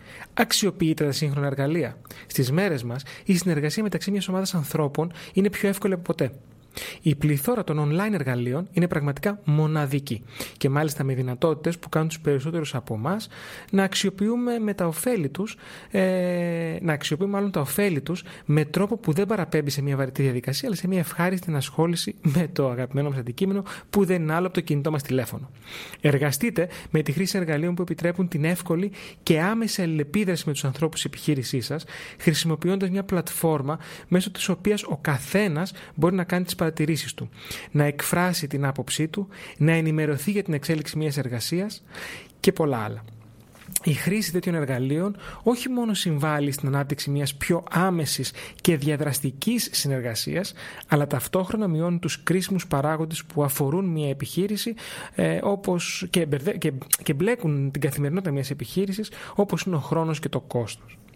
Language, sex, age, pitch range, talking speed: Greek, male, 30-49, 145-185 Hz, 150 wpm